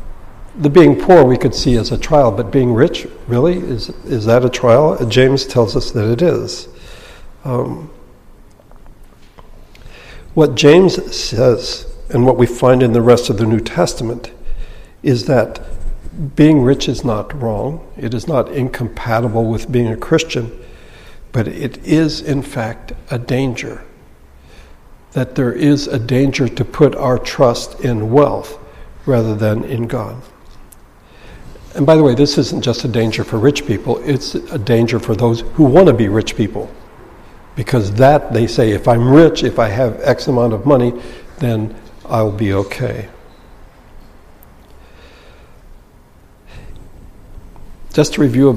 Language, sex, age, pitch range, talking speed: English, male, 60-79, 115-140 Hz, 150 wpm